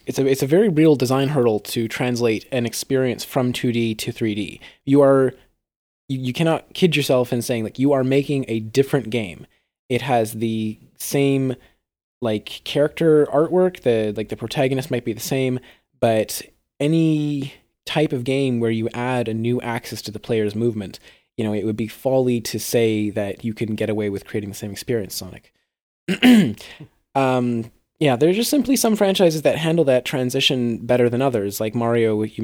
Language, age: English, 20-39